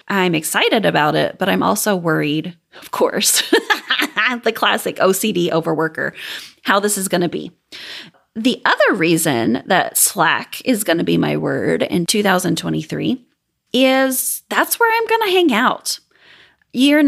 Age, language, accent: 30-49, English, American